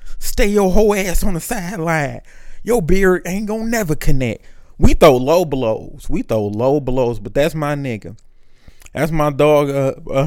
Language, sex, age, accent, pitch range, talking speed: English, male, 20-39, American, 120-160 Hz, 175 wpm